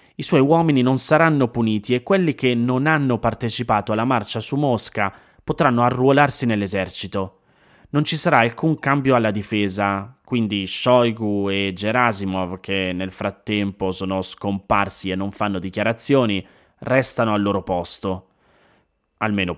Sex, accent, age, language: male, native, 20-39, Italian